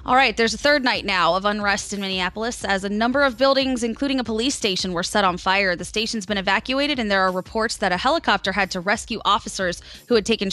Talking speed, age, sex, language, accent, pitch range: 240 wpm, 20-39, female, English, American, 185-240 Hz